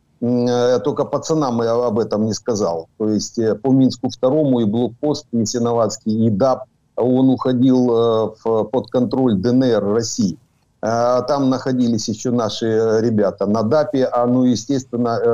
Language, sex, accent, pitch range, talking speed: Ukrainian, male, native, 115-140 Hz, 145 wpm